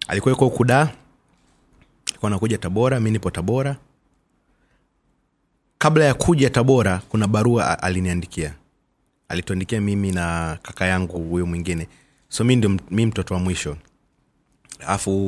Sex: male